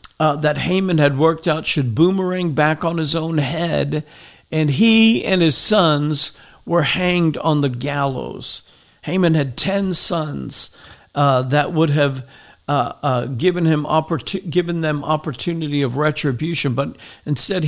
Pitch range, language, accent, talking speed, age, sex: 135-160 Hz, English, American, 145 wpm, 50-69, male